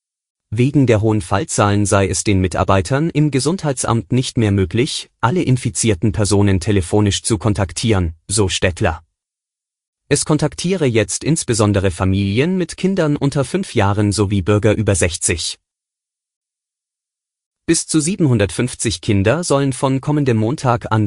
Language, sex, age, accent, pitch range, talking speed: German, male, 30-49, German, 100-125 Hz, 125 wpm